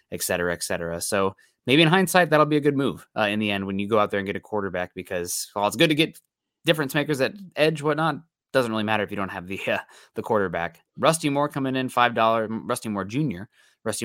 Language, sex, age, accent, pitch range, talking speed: English, male, 20-39, American, 100-130 Hz, 240 wpm